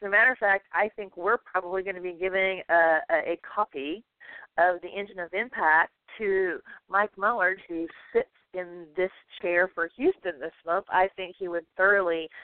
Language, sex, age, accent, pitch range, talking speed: English, female, 40-59, American, 170-220 Hz, 185 wpm